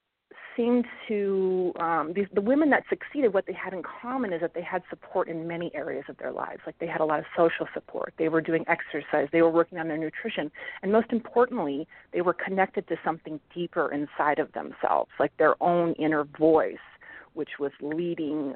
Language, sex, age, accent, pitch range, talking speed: English, female, 30-49, American, 155-190 Hz, 200 wpm